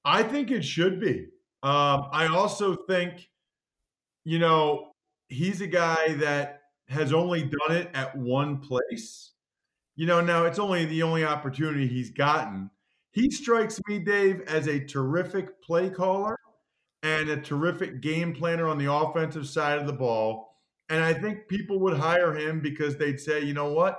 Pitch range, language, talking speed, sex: 145-190 Hz, English, 165 wpm, male